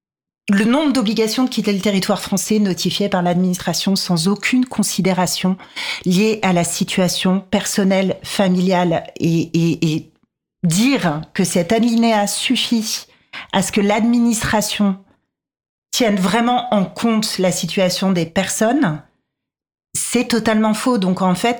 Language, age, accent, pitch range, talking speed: French, 40-59, French, 175-210 Hz, 130 wpm